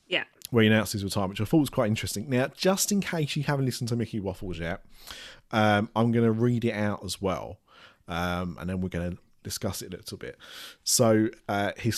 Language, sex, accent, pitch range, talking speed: English, male, British, 95-115 Hz, 225 wpm